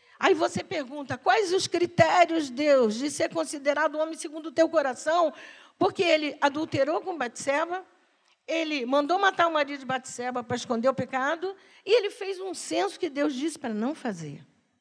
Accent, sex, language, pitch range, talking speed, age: Brazilian, female, Portuguese, 210-320 Hz, 175 wpm, 50-69